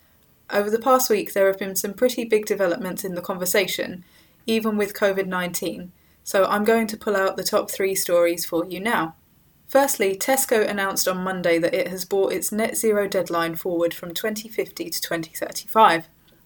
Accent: British